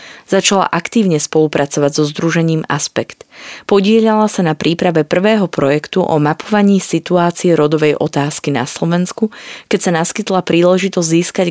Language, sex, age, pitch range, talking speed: Slovak, female, 30-49, 150-190 Hz, 125 wpm